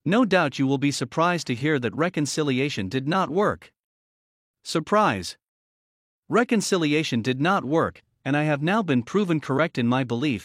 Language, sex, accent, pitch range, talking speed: English, male, American, 125-175 Hz, 160 wpm